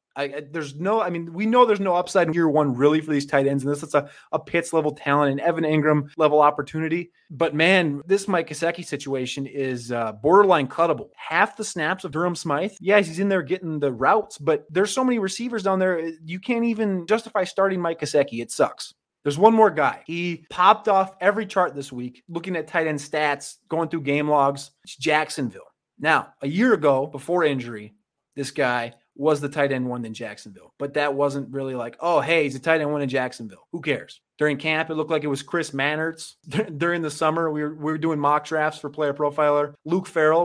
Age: 30-49